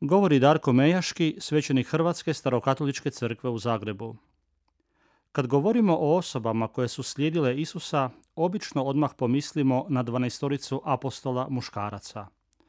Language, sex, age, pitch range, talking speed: Croatian, male, 40-59, 120-155 Hz, 115 wpm